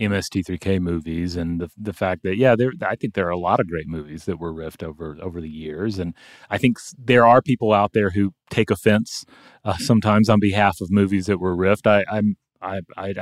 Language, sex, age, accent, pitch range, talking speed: English, male, 30-49, American, 90-110 Hz, 215 wpm